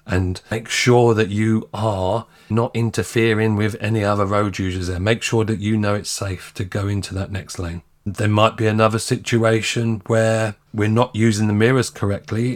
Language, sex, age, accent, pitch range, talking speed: English, male, 40-59, British, 105-130 Hz, 185 wpm